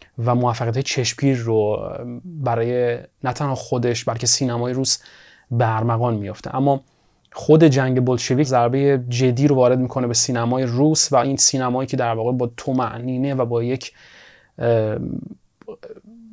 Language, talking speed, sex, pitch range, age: Persian, 140 wpm, male, 120-135 Hz, 30-49